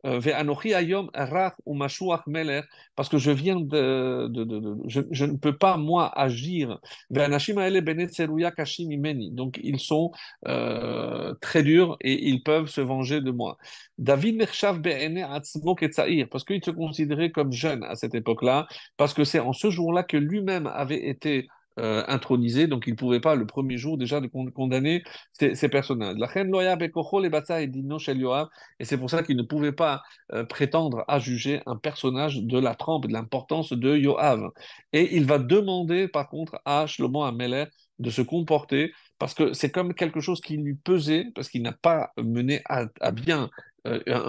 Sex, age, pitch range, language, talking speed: male, 50-69, 130-165 Hz, French, 155 wpm